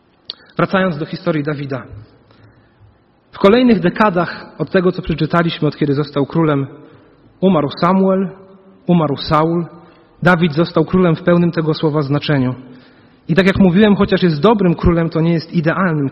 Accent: native